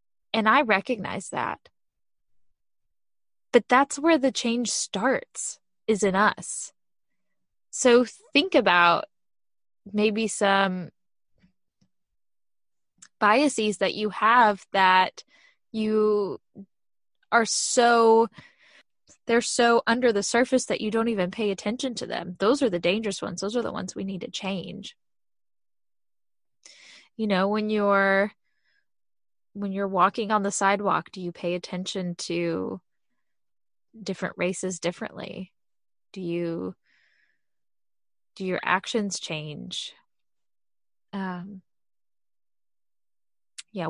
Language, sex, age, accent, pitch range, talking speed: English, female, 10-29, American, 185-230 Hz, 105 wpm